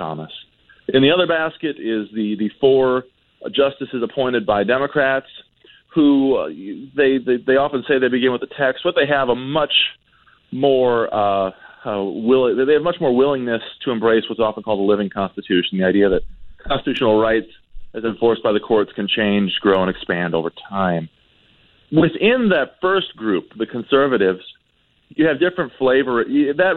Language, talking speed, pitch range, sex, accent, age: English, 170 wpm, 105-135 Hz, male, American, 40-59